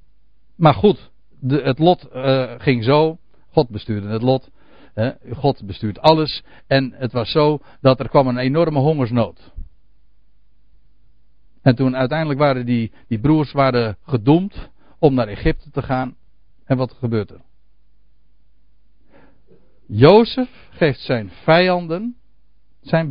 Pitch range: 115-155 Hz